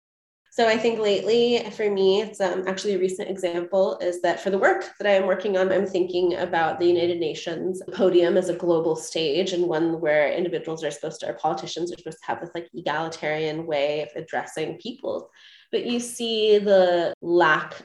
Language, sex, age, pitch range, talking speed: English, female, 20-39, 165-190 Hz, 190 wpm